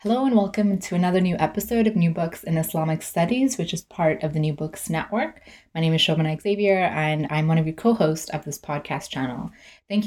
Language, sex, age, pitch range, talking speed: English, female, 20-39, 150-185 Hz, 220 wpm